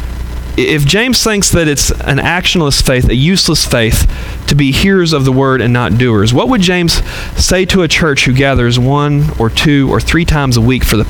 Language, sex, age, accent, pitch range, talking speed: English, male, 40-59, American, 115-175 Hz, 210 wpm